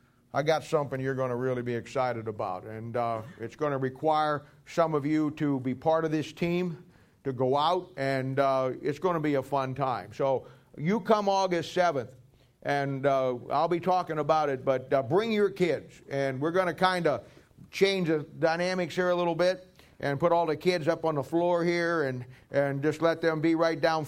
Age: 50-69